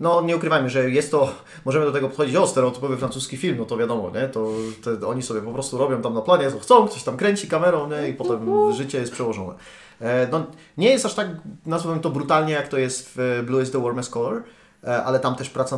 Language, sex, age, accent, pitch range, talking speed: Polish, male, 30-49, native, 125-170 Hz, 230 wpm